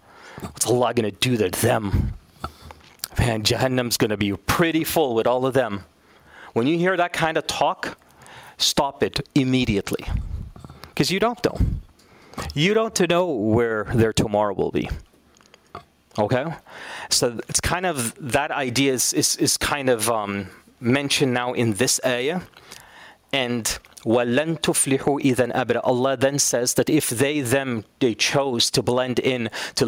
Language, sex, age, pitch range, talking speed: English, male, 30-49, 115-145 Hz, 145 wpm